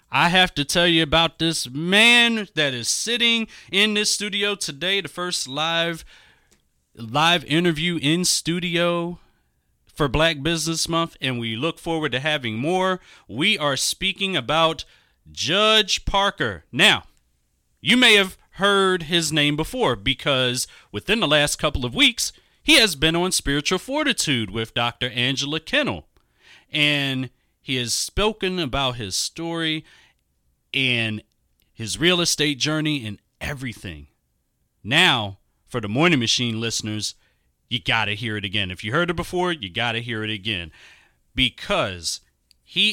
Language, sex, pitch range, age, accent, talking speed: English, male, 115-170 Hz, 30-49, American, 145 wpm